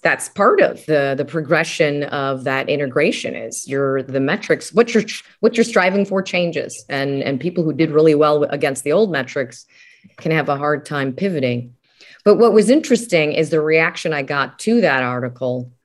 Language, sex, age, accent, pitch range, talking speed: English, female, 30-49, American, 140-185 Hz, 185 wpm